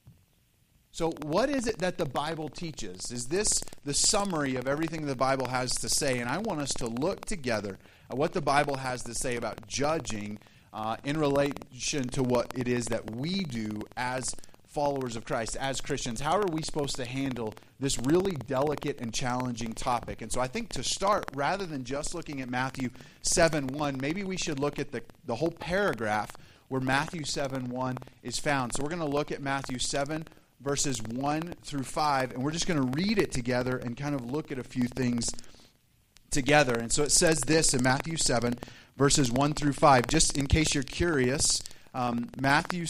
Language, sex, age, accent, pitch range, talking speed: English, male, 30-49, American, 125-150 Hz, 195 wpm